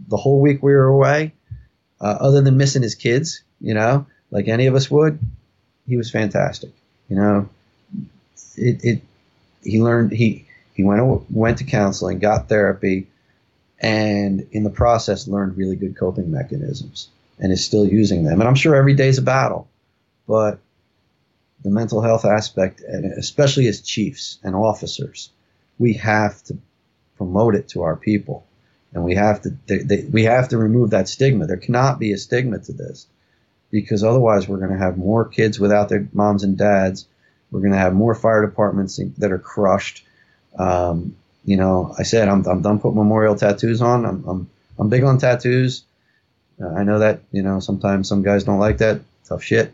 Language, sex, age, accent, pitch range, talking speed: English, male, 40-59, American, 100-125 Hz, 180 wpm